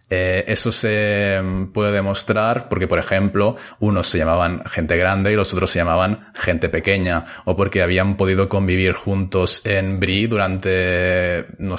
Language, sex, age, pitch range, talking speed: Spanish, male, 20-39, 90-105 Hz, 155 wpm